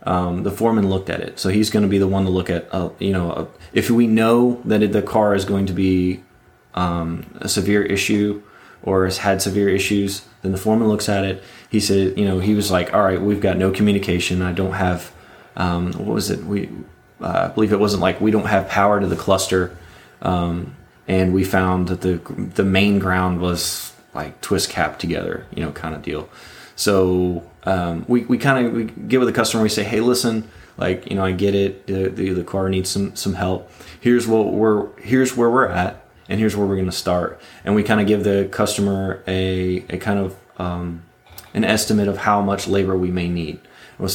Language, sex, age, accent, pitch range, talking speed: English, male, 30-49, American, 95-105 Hz, 225 wpm